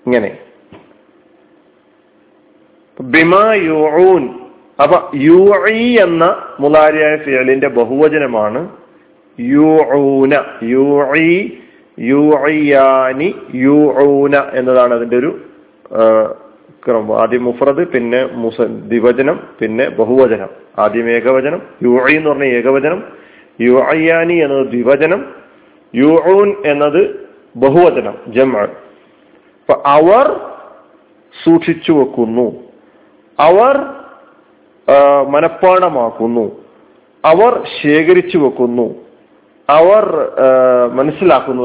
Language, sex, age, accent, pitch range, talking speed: Malayalam, male, 40-59, native, 130-180 Hz, 70 wpm